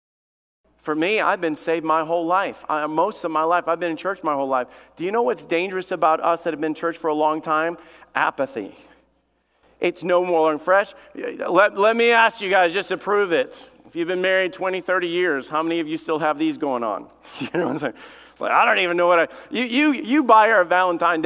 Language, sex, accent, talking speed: English, male, American, 245 wpm